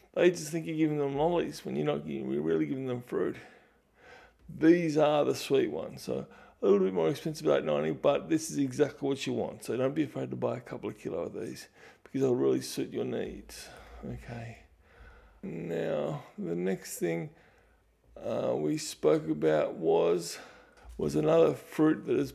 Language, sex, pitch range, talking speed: English, male, 125-165 Hz, 185 wpm